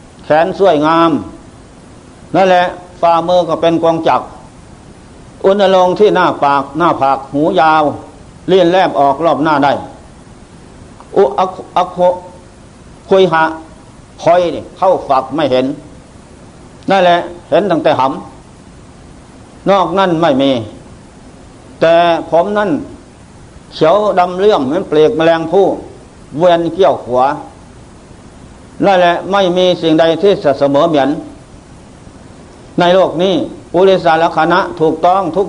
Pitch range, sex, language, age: 155-185 Hz, male, Thai, 60-79